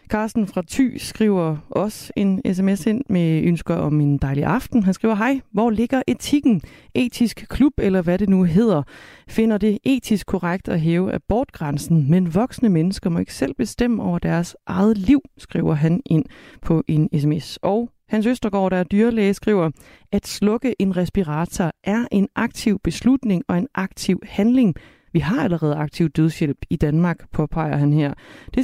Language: Danish